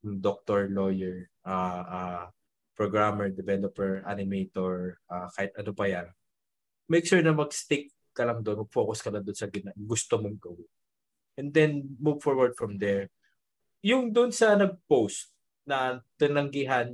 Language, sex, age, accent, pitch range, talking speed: Filipino, male, 20-39, native, 100-125 Hz, 140 wpm